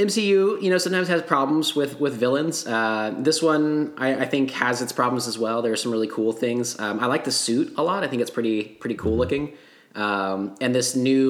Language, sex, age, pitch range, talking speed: English, male, 20-39, 100-130 Hz, 235 wpm